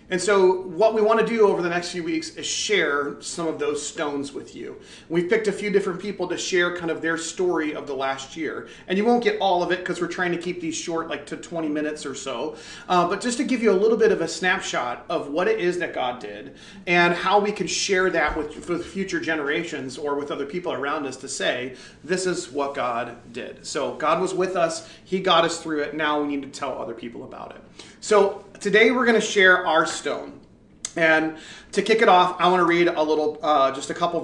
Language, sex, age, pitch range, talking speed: English, male, 30-49, 145-185 Hz, 245 wpm